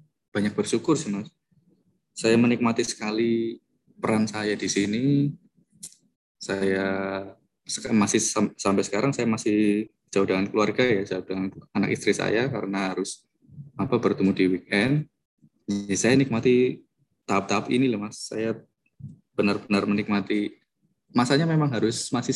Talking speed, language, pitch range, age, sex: 125 wpm, Indonesian, 95-120 Hz, 20-39, male